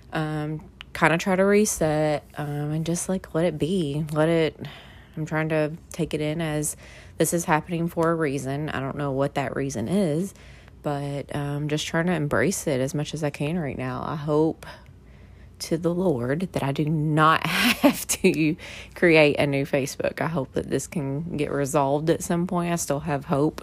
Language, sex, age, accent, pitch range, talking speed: English, female, 20-39, American, 145-170 Hz, 195 wpm